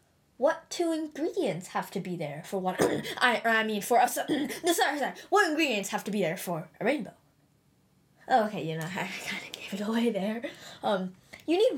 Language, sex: English, female